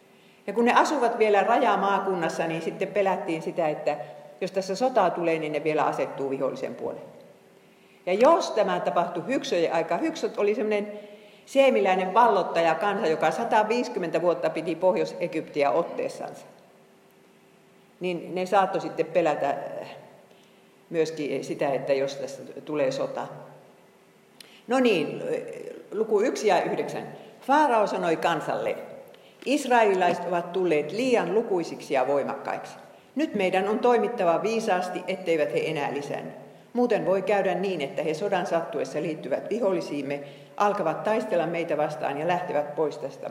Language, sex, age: Finnish, female, 50-69